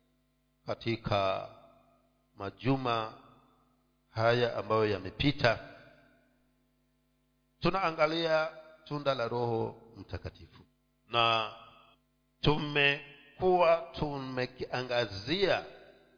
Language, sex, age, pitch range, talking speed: Swahili, male, 50-69, 120-170 Hz, 50 wpm